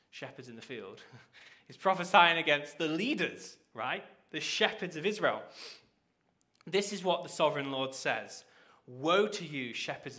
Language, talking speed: English, 145 wpm